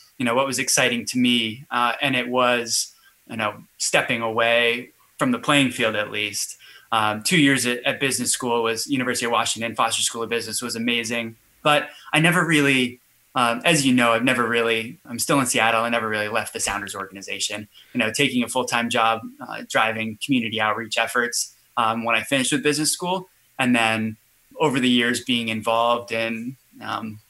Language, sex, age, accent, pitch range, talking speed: English, male, 20-39, American, 115-140 Hz, 190 wpm